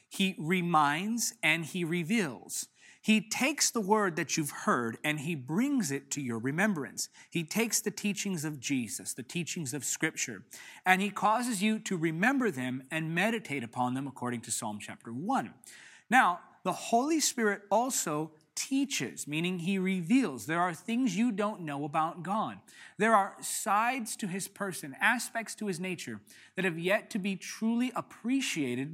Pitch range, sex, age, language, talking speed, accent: 150-220 Hz, male, 30-49, English, 165 wpm, American